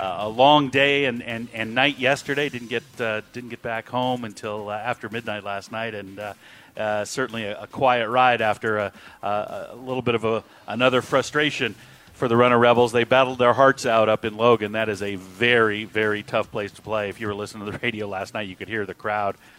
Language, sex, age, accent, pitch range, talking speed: English, male, 40-59, American, 105-125 Hz, 230 wpm